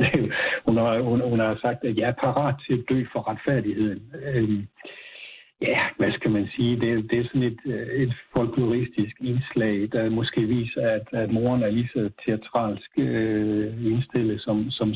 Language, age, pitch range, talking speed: Danish, 60-79, 110-125 Hz, 175 wpm